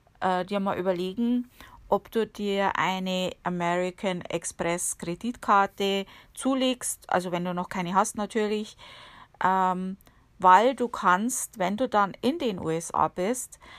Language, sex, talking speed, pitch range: German, female, 125 wpm, 185-220 Hz